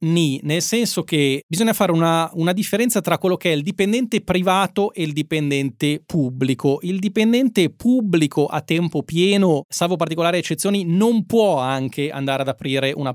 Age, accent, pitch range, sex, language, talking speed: 30-49, native, 135-175 Hz, male, Italian, 165 wpm